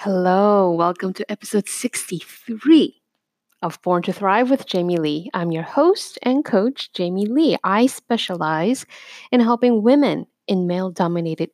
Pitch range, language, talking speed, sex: 185-255 Hz, English, 135 wpm, female